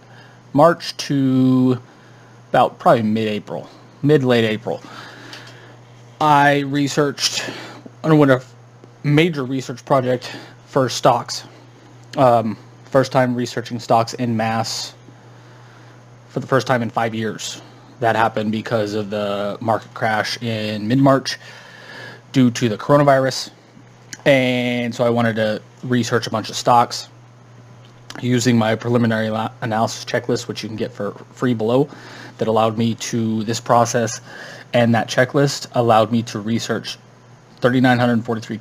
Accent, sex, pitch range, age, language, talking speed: American, male, 110-125 Hz, 20-39, English, 125 wpm